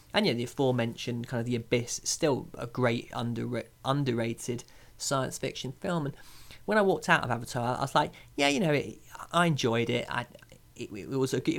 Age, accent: 20-39, British